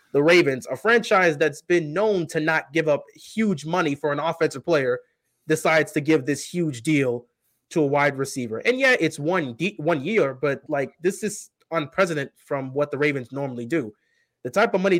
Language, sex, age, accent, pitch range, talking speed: English, male, 20-39, American, 125-165 Hz, 195 wpm